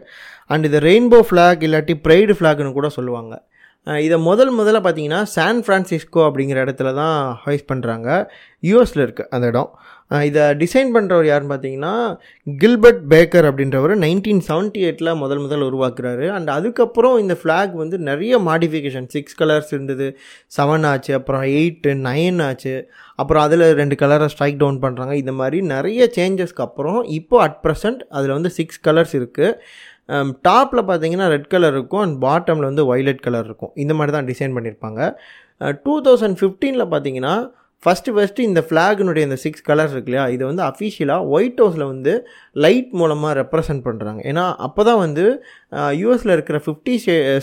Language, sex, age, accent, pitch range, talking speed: Tamil, male, 20-39, native, 140-190 Hz, 100 wpm